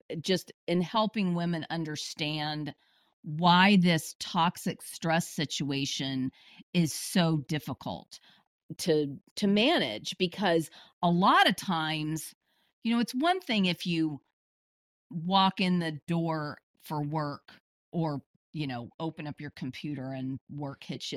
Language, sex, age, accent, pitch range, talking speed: English, female, 40-59, American, 150-195 Hz, 130 wpm